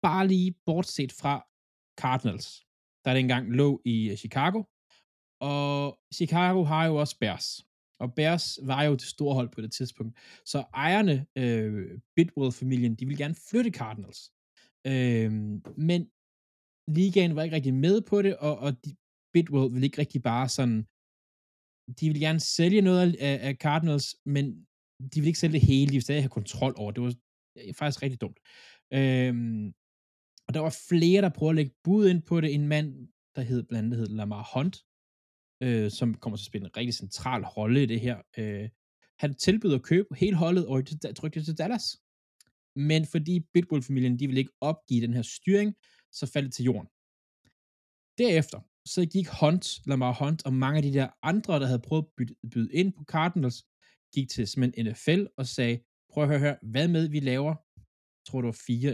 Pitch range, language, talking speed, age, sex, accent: 120-160 Hz, Danish, 185 wpm, 20-39, male, native